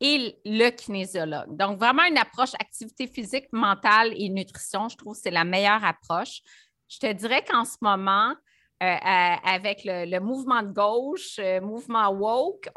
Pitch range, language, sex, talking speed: 185-240 Hz, French, female, 165 wpm